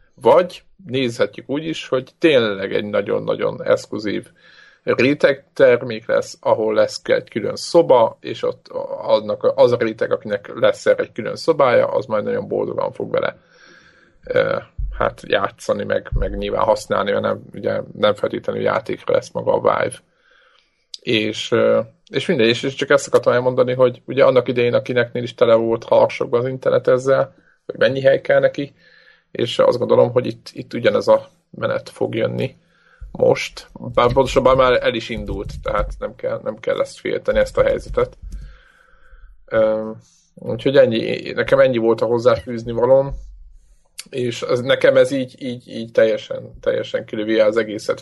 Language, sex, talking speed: Hungarian, male, 155 wpm